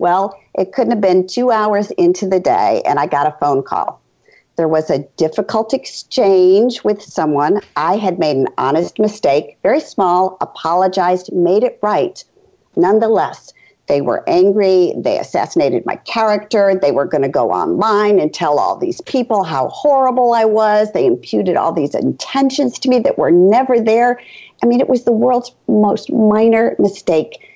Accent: American